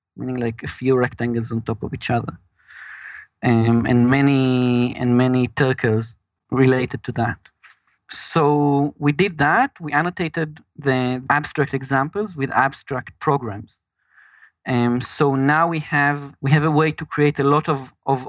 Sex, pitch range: male, 125-150 Hz